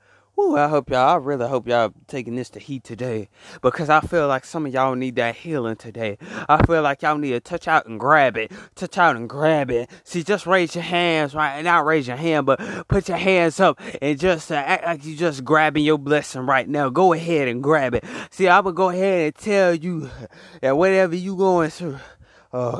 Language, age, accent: English, 20-39, American